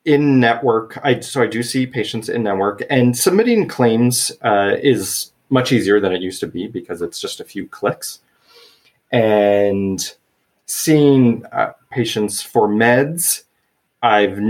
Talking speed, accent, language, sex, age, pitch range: 145 wpm, American, English, male, 30-49, 100-135 Hz